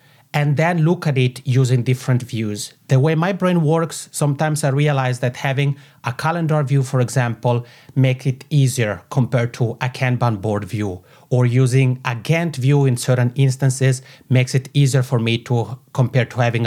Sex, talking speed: male, 175 wpm